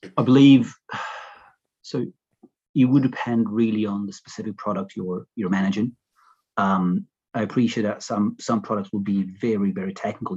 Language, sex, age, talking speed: English, male, 30-49, 150 wpm